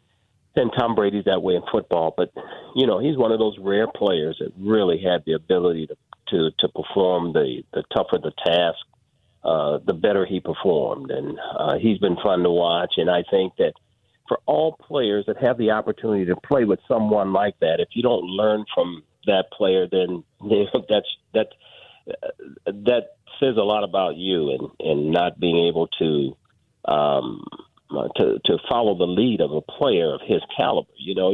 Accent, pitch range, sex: American, 95-130 Hz, male